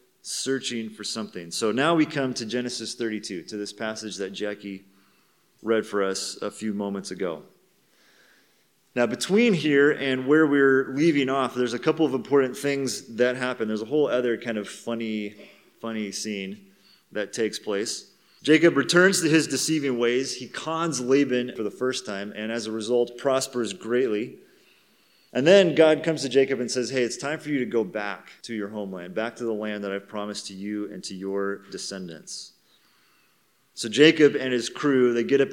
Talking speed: 185 wpm